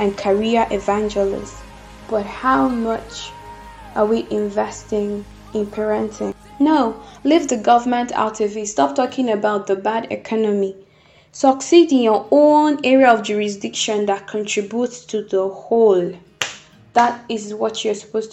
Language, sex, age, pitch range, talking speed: English, female, 10-29, 205-245 Hz, 130 wpm